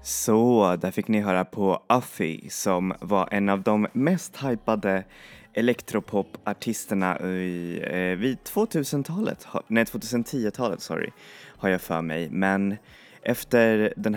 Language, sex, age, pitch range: Swedish, male, 20-39, 95-115 Hz